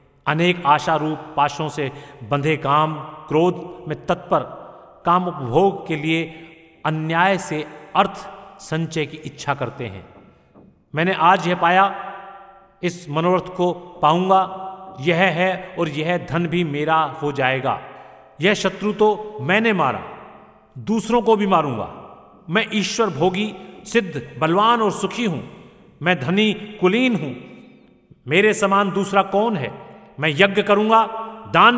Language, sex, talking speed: Hindi, male, 130 wpm